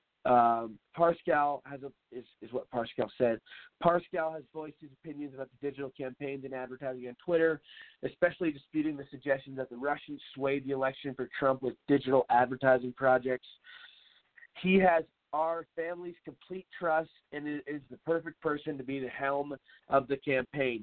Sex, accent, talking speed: male, American, 155 wpm